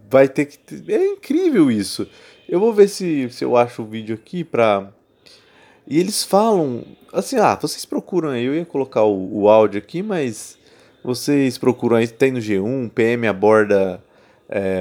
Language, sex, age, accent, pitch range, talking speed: Portuguese, male, 20-39, Brazilian, 105-175 Hz, 170 wpm